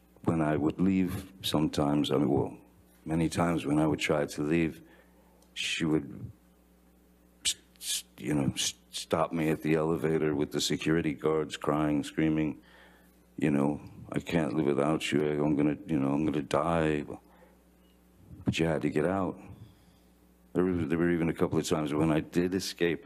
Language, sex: English, male